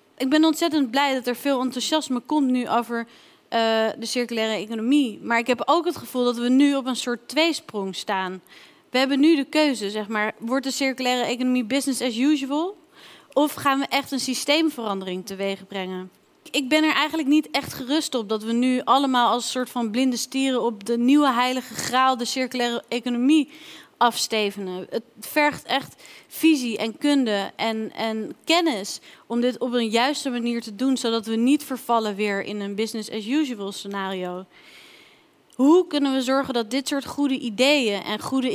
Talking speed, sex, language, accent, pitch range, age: 180 wpm, female, Dutch, Dutch, 215-275 Hz, 30-49